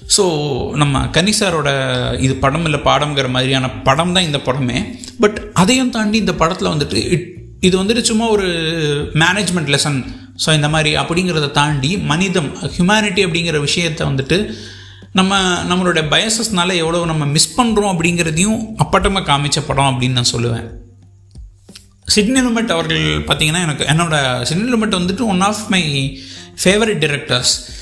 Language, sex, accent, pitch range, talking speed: Tamil, male, native, 135-190 Hz, 135 wpm